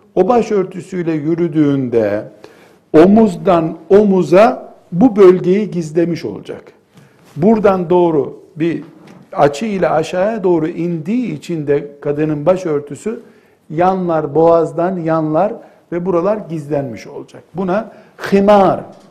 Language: Turkish